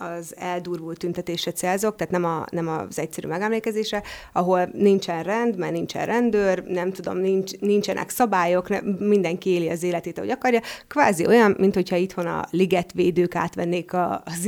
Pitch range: 175-195 Hz